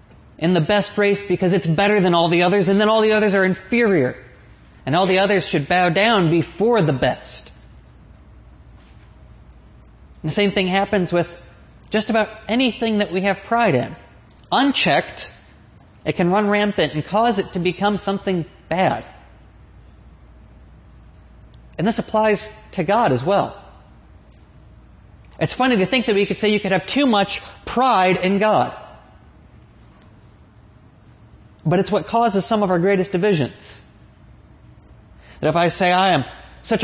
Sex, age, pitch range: male, 30-49, 175-215 Hz